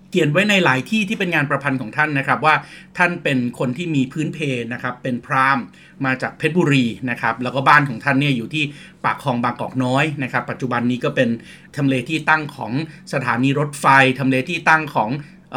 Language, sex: Thai, male